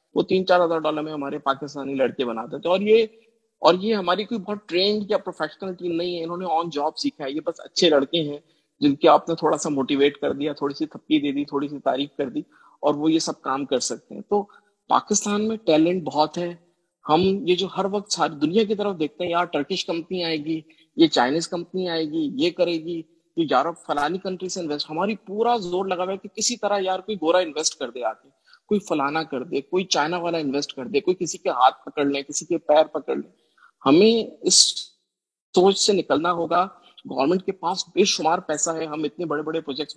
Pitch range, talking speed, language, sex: 150-185 Hz, 220 wpm, Urdu, male